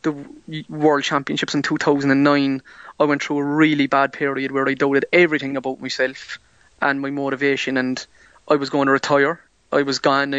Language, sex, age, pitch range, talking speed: English, male, 20-39, 135-150 Hz, 175 wpm